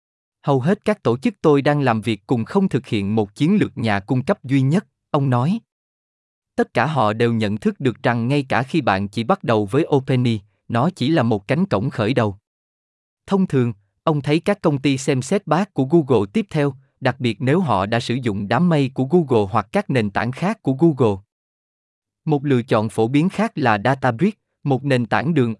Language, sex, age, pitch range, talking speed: Vietnamese, male, 20-39, 115-155 Hz, 215 wpm